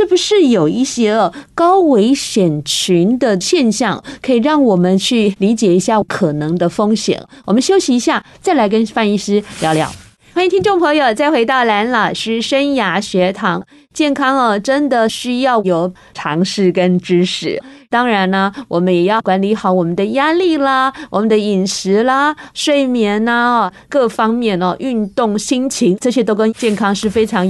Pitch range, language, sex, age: 185-250 Hz, Chinese, female, 20-39